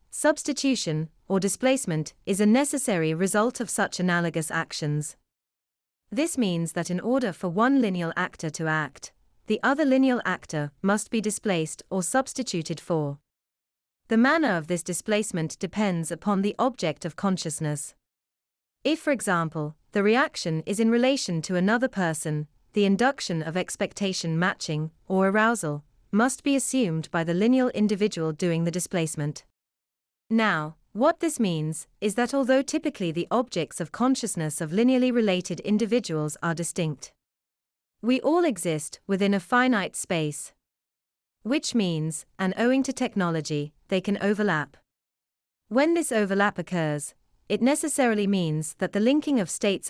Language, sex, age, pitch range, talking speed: English, female, 30-49, 160-230 Hz, 140 wpm